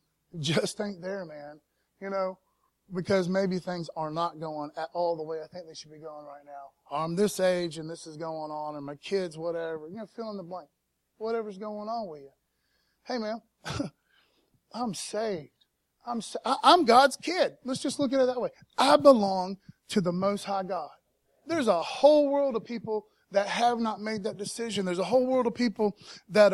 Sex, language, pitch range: male, English, 160-215 Hz